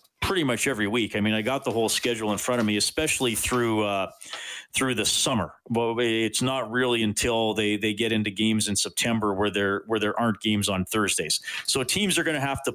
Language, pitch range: English, 110-135 Hz